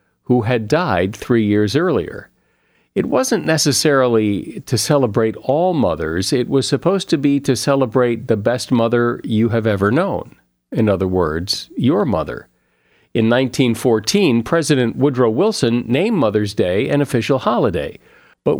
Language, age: English, 50-69